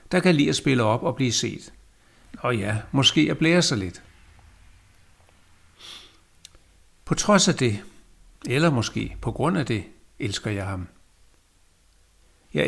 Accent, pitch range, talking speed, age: native, 100-135 Hz, 140 wpm, 60-79